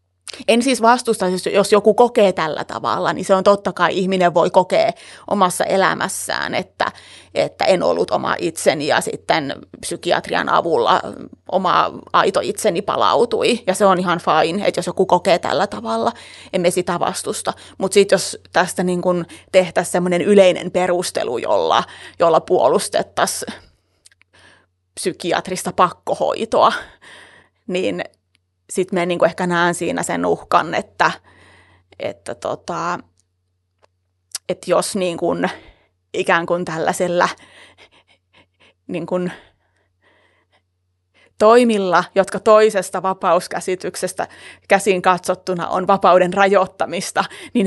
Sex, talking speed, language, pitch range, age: female, 105 wpm, Finnish, 145-195 Hz, 30-49